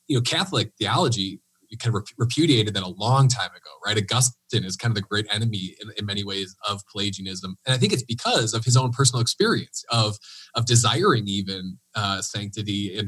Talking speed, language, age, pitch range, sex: 195 wpm, English, 30-49, 105-130 Hz, male